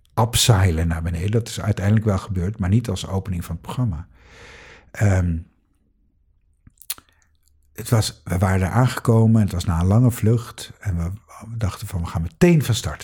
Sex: male